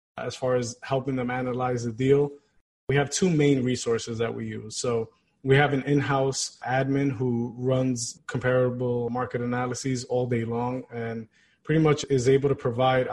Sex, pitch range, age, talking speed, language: male, 120-140 Hz, 20-39, 170 wpm, English